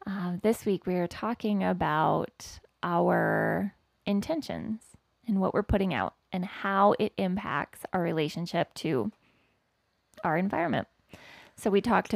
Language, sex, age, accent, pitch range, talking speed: English, female, 20-39, American, 170-215 Hz, 125 wpm